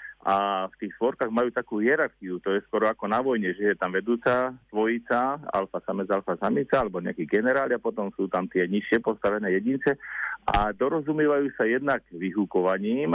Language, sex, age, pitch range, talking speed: Slovak, male, 50-69, 95-120 Hz, 175 wpm